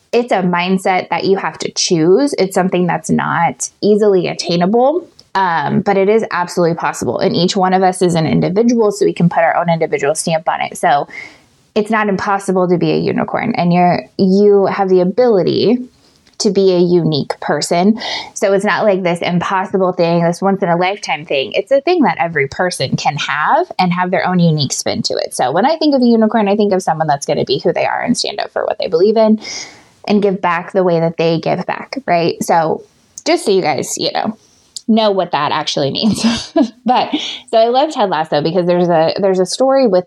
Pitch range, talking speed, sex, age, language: 170-215 Hz, 215 wpm, female, 20-39, English